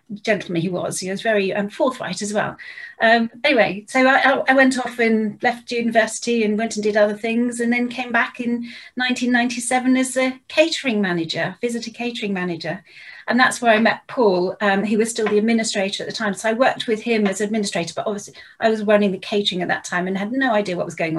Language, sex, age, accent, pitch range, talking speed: English, female, 40-59, British, 205-245 Hz, 220 wpm